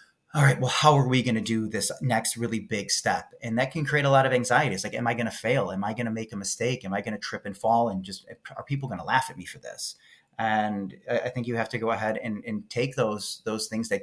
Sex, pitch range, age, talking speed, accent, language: male, 110-130 Hz, 30-49, 295 wpm, American, English